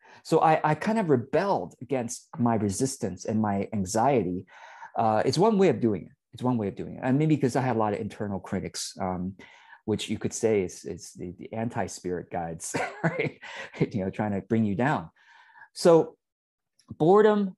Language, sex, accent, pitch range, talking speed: English, male, American, 110-145 Hz, 185 wpm